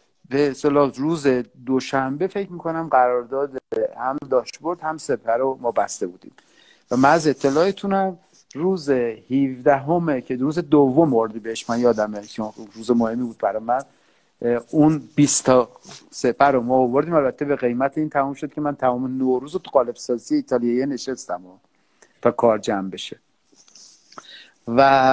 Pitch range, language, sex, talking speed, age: 125-155 Hz, Persian, male, 145 wpm, 50-69